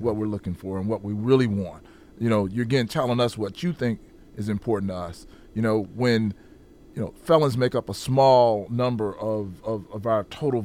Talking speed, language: 215 wpm, English